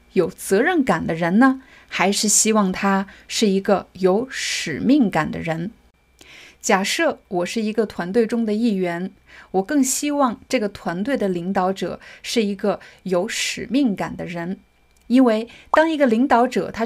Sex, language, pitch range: female, Chinese, 190-260 Hz